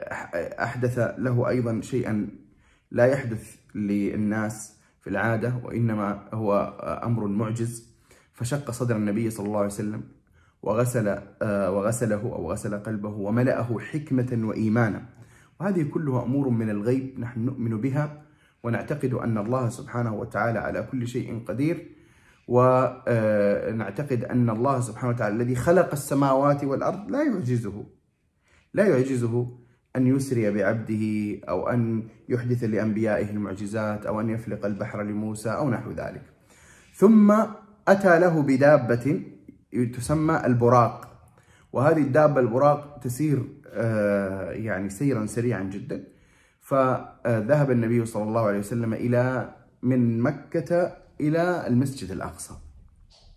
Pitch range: 105-130 Hz